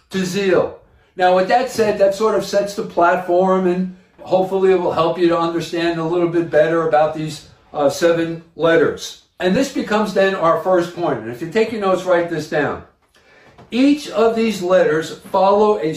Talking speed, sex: 185 wpm, male